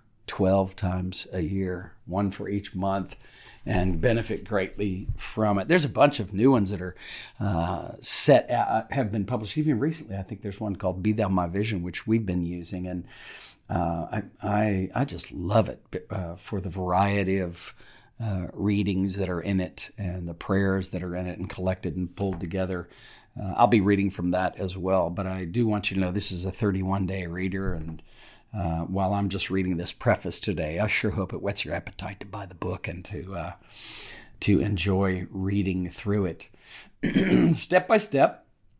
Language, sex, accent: English, male, American